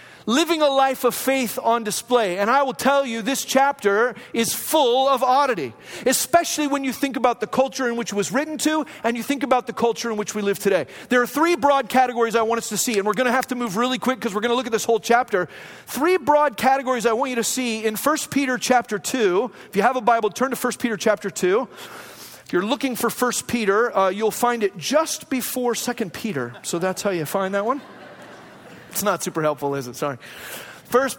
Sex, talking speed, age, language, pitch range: male, 235 wpm, 40-59, English, 220-270 Hz